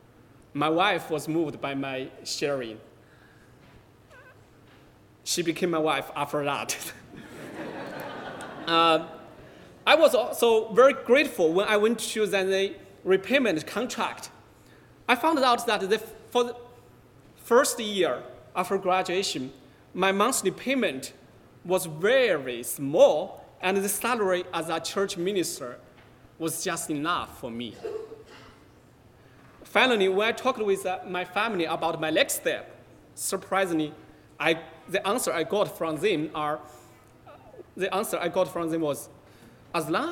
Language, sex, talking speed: English, male, 125 wpm